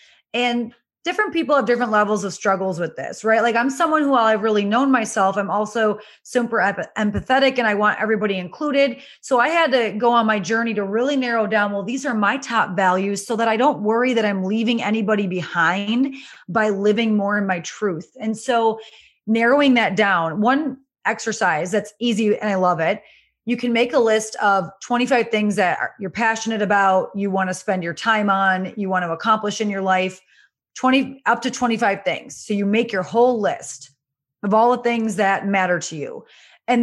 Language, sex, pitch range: English, female, 195-245 Hz